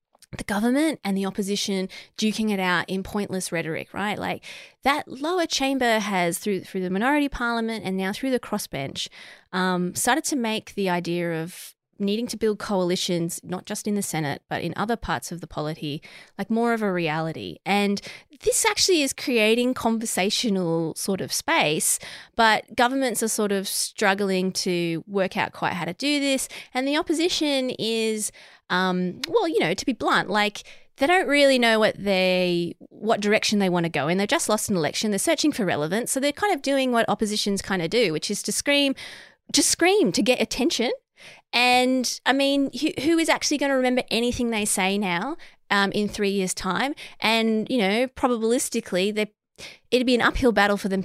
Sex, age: female, 20-39